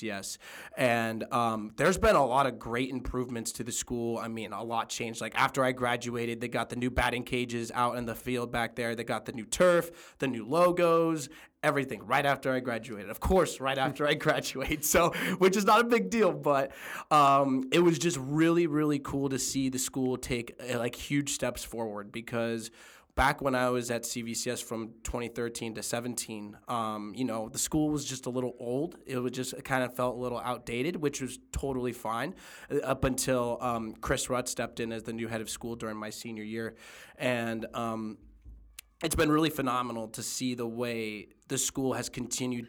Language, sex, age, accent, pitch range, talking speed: English, male, 20-39, American, 115-130 Hz, 200 wpm